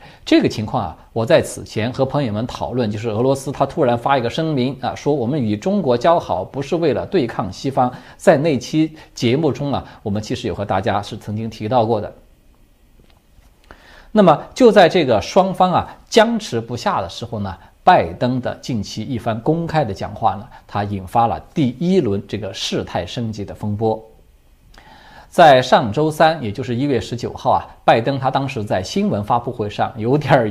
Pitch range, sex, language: 105-145 Hz, male, Chinese